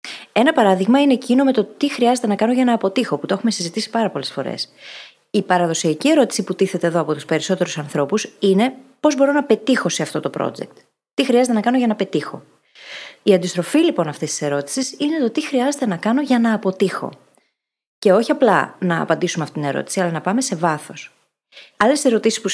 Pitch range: 180-255 Hz